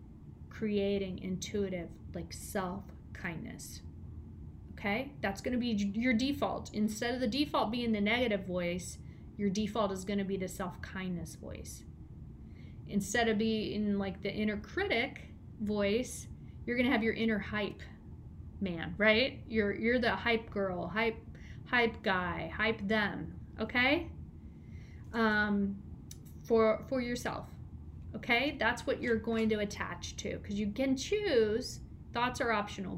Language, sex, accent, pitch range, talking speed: English, female, American, 195-240 Hz, 135 wpm